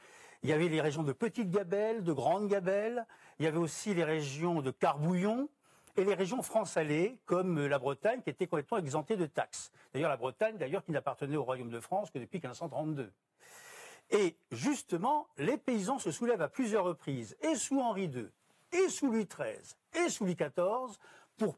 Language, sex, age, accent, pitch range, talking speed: French, male, 50-69, French, 165-255 Hz, 190 wpm